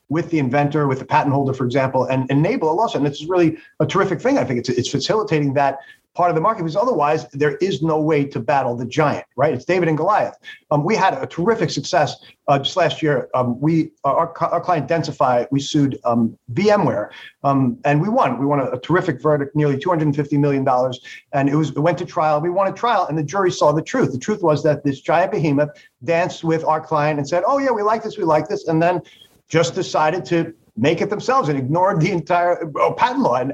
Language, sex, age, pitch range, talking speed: English, male, 40-59, 145-180 Hz, 235 wpm